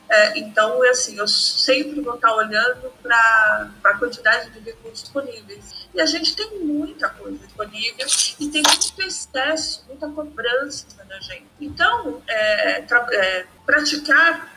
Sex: female